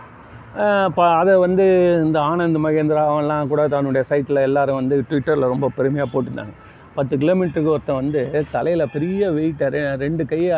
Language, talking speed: Tamil, 135 wpm